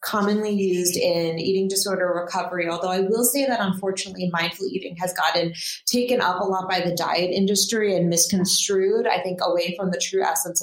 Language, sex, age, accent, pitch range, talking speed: English, female, 30-49, American, 170-200 Hz, 185 wpm